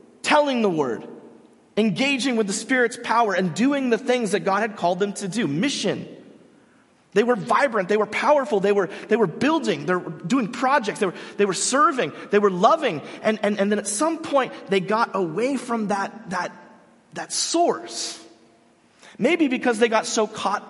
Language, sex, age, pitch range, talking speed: English, male, 30-49, 195-250 Hz, 175 wpm